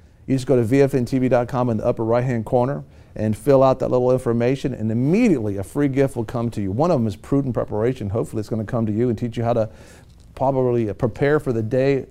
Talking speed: 240 wpm